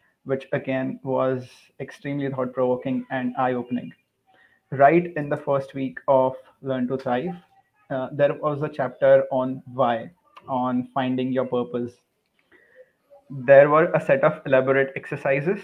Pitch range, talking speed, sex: 130-150 Hz, 130 wpm, male